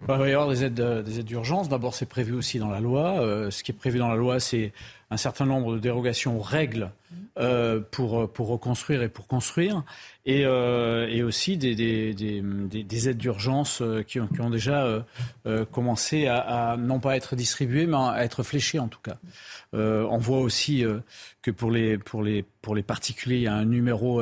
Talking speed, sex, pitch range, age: 185 wpm, male, 115-135 Hz, 40-59